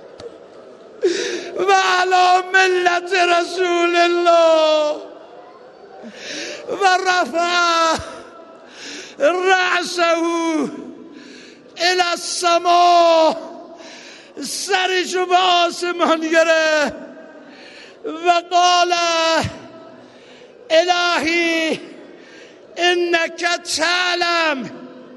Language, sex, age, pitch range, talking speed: Persian, male, 60-79, 305-350 Hz, 40 wpm